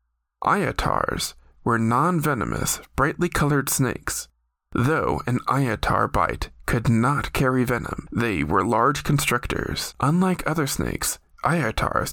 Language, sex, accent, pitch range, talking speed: English, male, American, 110-150 Hz, 110 wpm